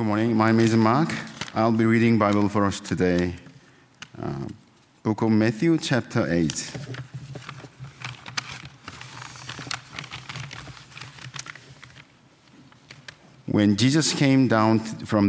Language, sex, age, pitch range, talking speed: English, male, 50-69, 95-130 Hz, 95 wpm